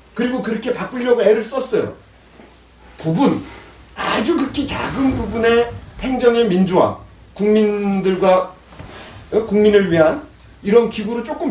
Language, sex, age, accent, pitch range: Korean, male, 40-59, native, 195-270 Hz